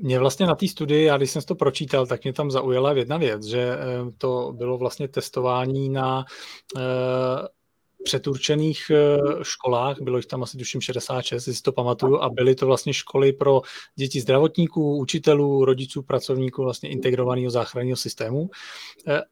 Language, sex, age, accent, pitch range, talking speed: Czech, male, 40-59, native, 130-155 Hz, 160 wpm